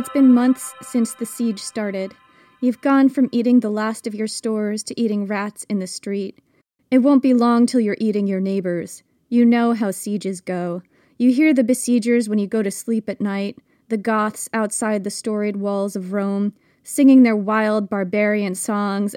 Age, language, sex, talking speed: 20-39, English, female, 190 wpm